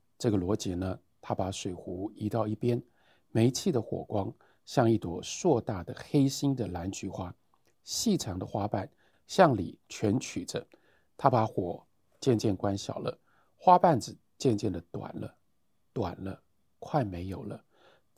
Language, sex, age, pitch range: Chinese, male, 50-69, 95-130 Hz